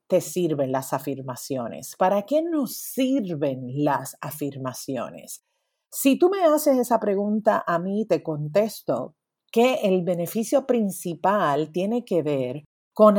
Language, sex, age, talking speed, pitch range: Spanish, female, 40-59, 125 wpm, 155-230 Hz